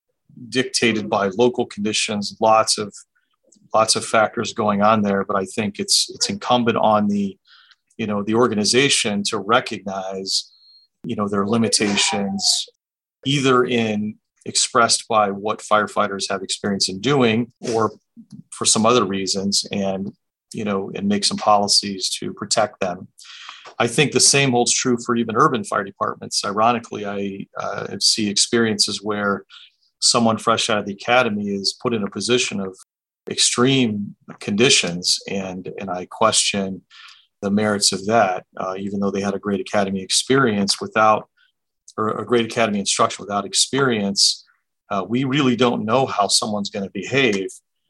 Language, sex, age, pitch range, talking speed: English, male, 40-59, 100-120 Hz, 150 wpm